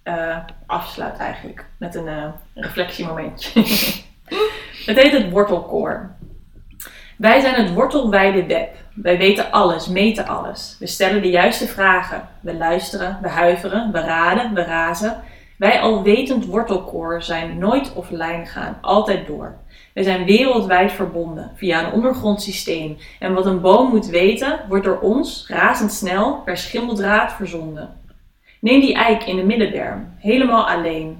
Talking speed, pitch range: 140 wpm, 175-220 Hz